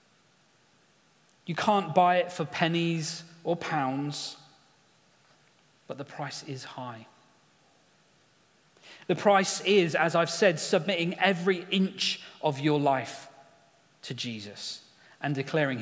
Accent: British